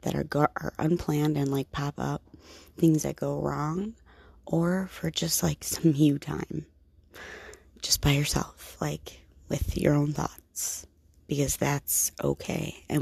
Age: 30-49